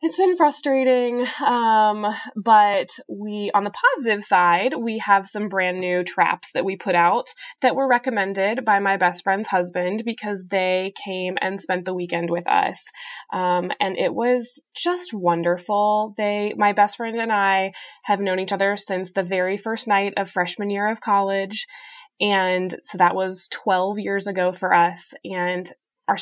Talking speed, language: 170 wpm, English